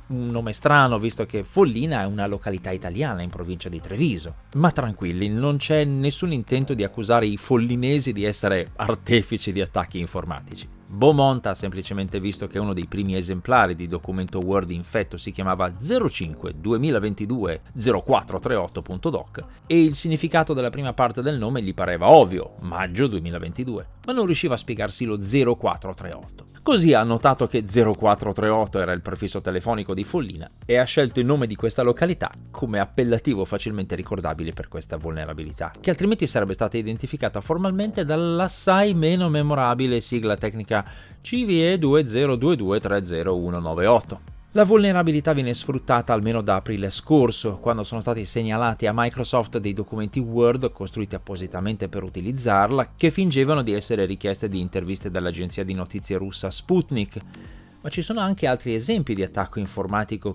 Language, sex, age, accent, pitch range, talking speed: Italian, male, 30-49, native, 95-130 Hz, 145 wpm